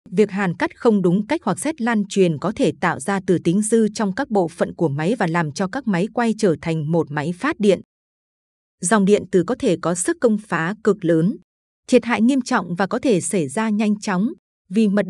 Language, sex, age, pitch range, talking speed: Vietnamese, female, 20-39, 180-225 Hz, 235 wpm